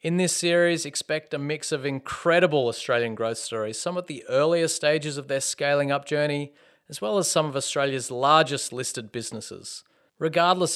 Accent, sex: Australian, male